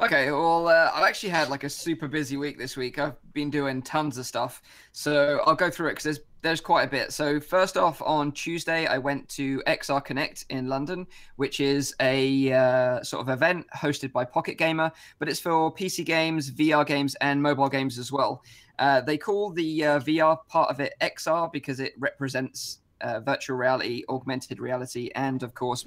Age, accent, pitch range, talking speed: 20-39, British, 135-150 Hz, 200 wpm